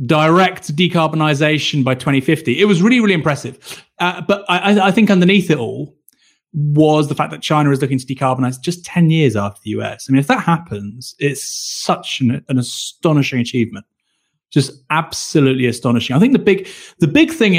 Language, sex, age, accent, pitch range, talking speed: English, male, 30-49, British, 125-175 Hz, 180 wpm